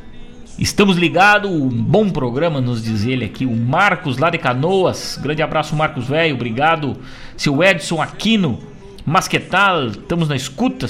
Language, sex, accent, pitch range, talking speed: Portuguese, male, Brazilian, 125-170 Hz, 155 wpm